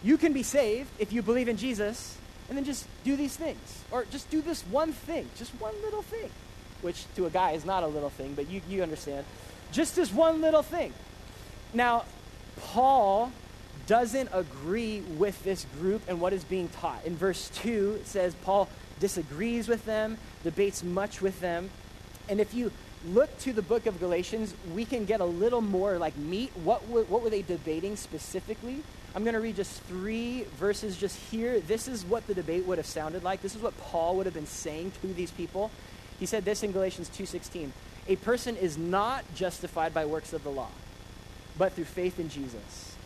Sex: male